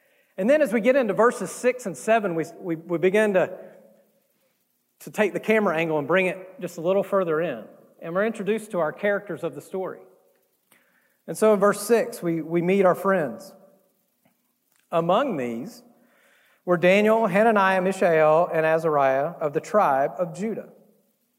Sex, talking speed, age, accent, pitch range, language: male, 165 wpm, 40-59, American, 165-220 Hz, English